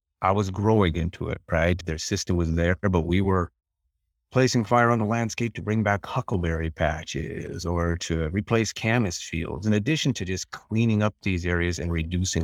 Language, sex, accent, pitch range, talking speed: English, male, American, 85-105 Hz, 185 wpm